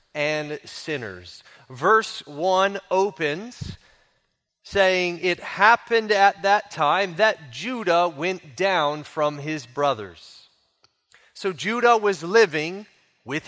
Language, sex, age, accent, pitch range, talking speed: English, male, 30-49, American, 165-210 Hz, 100 wpm